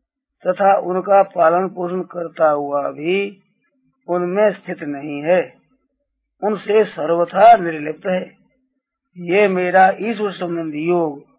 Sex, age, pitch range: male, 50-69, 175-245 Hz